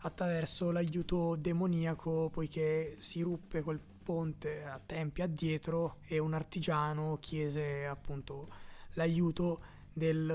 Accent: native